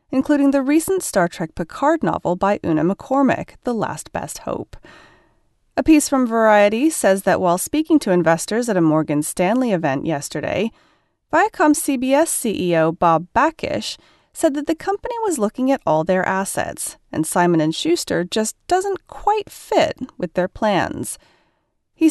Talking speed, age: 150 wpm, 30-49